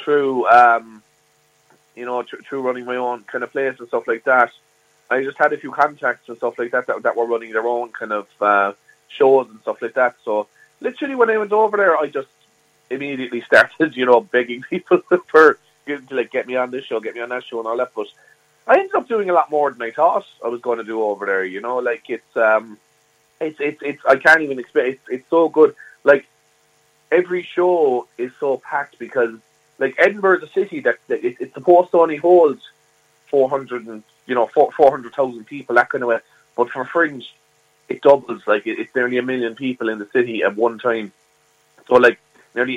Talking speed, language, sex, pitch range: 220 wpm, English, male, 120-155 Hz